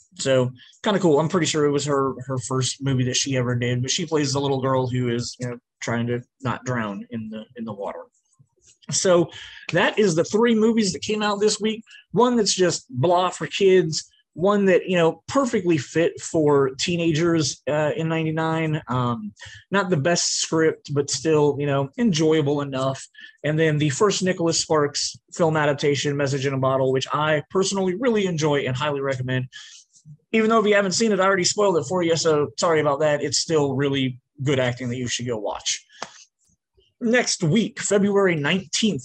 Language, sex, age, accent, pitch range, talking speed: English, male, 30-49, American, 140-195 Hz, 195 wpm